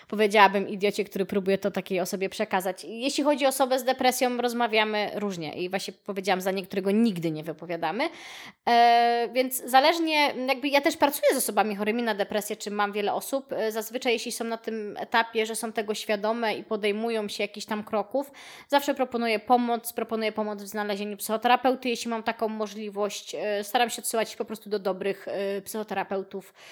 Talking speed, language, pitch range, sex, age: 170 wpm, Polish, 205-255 Hz, female, 20-39